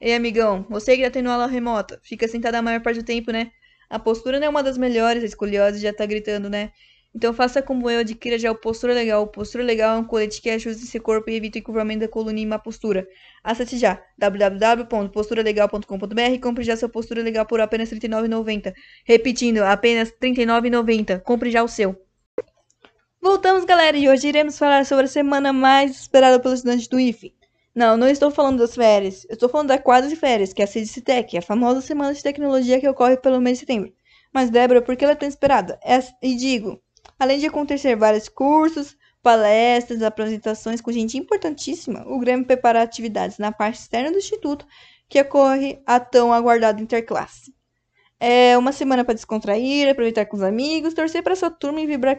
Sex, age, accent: female, 20-39, Brazilian